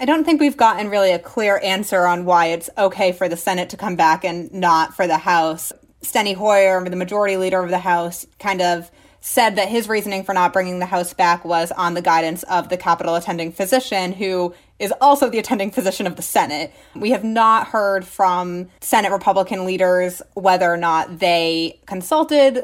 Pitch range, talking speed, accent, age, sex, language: 175-220 Hz, 200 wpm, American, 20-39, female, English